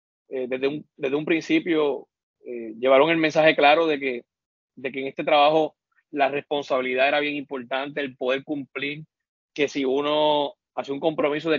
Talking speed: 165 wpm